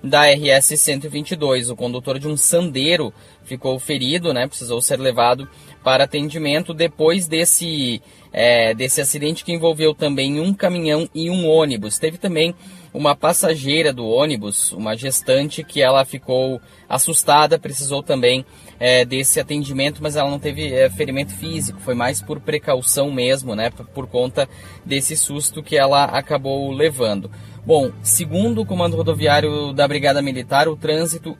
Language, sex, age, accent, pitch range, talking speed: Portuguese, male, 10-29, Brazilian, 125-155 Hz, 140 wpm